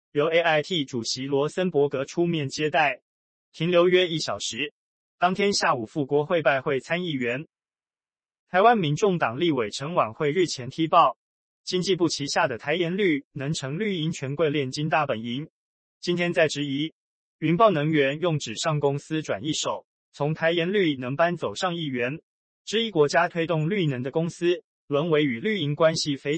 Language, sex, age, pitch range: Chinese, male, 20-39, 140-175 Hz